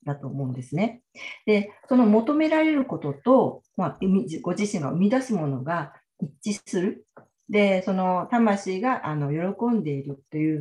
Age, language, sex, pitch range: 40-59, Japanese, female, 145-230 Hz